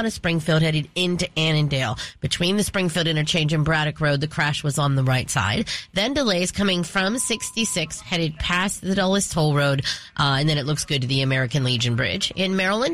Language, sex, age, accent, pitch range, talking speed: English, female, 30-49, American, 150-195 Hz, 200 wpm